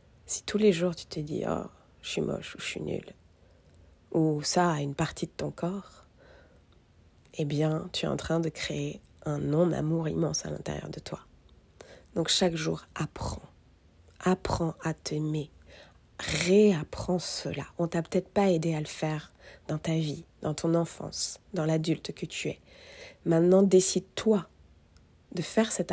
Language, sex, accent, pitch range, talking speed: French, female, French, 155-185 Hz, 175 wpm